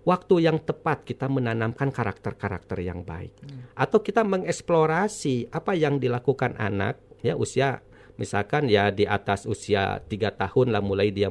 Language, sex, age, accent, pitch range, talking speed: Indonesian, male, 40-59, native, 105-155 Hz, 145 wpm